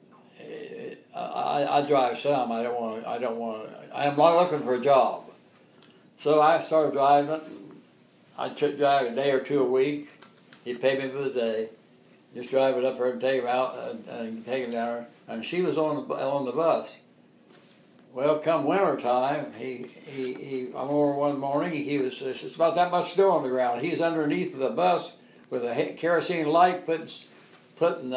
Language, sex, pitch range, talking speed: English, male, 125-150 Hz, 190 wpm